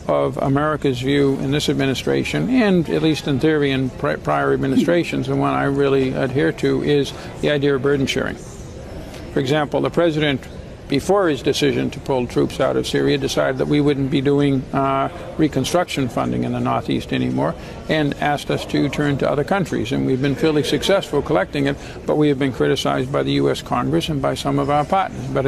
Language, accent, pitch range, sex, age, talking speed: English, American, 135-150 Hz, male, 60-79, 195 wpm